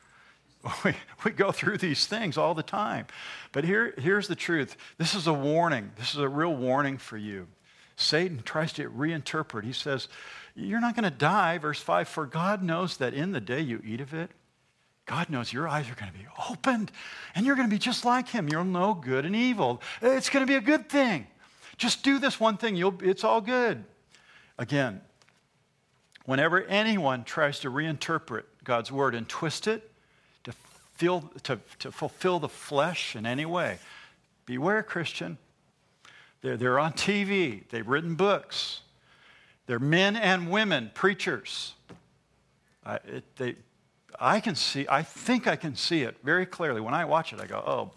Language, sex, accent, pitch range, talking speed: English, male, American, 140-210 Hz, 175 wpm